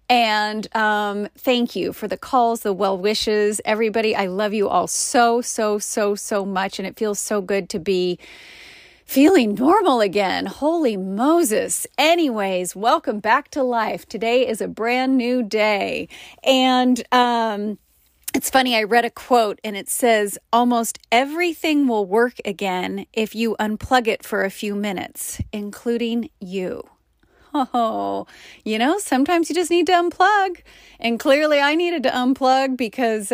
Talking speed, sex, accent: 155 wpm, female, American